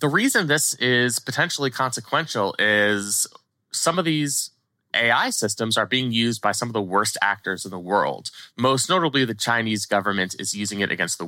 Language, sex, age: English, male, 20-39